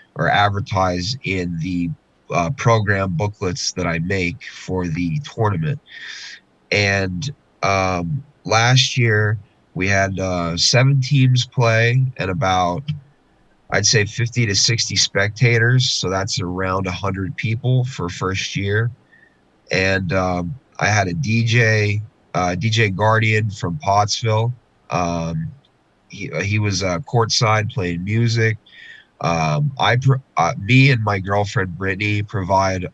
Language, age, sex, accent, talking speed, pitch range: English, 30-49, male, American, 120 wpm, 95-120 Hz